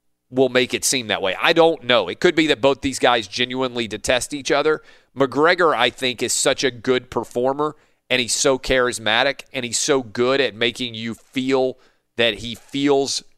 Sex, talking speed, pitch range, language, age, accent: male, 195 wpm, 95-145 Hz, English, 40-59, American